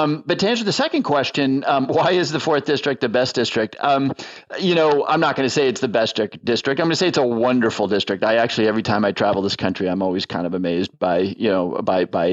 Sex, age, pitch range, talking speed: male, 40-59, 100-130 Hz, 265 wpm